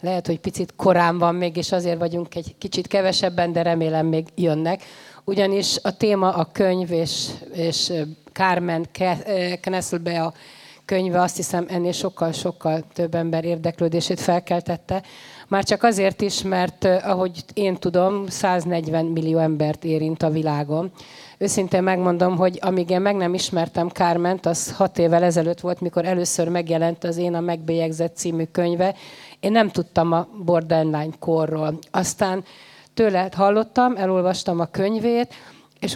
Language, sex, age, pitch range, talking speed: Hungarian, female, 30-49, 170-190 Hz, 140 wpm